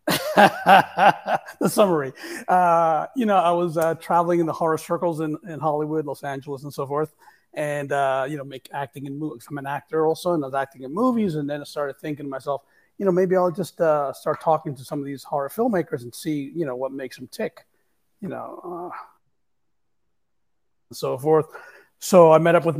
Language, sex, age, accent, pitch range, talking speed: English, male, 40-59, American, 140-175 Hz, 210 wpm